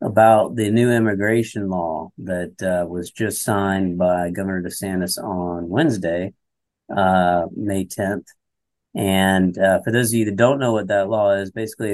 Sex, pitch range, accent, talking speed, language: male, 90-110 Hz, American, 160 wpm, English